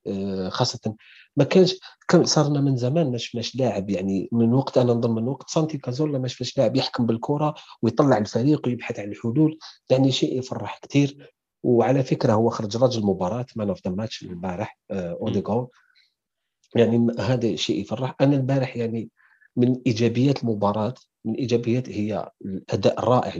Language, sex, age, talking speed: Arabic, male, 40-59, 150 wpm